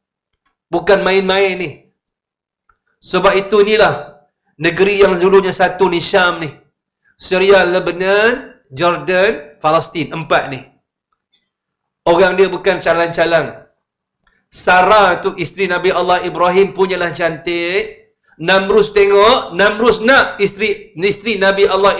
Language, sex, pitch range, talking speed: English, male, 180-220 Hz, 105 wpm